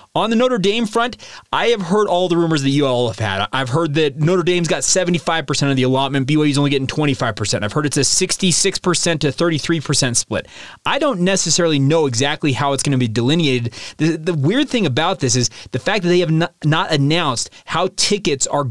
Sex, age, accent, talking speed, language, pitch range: male, 30-49, American, 215 wpm, English, 140-185 Hz